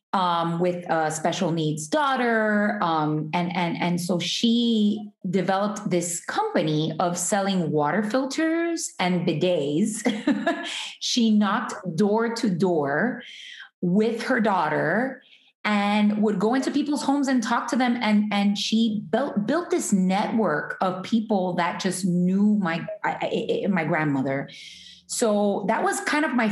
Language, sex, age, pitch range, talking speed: English, female, 30-49, 175-220 Hz, 145 wpm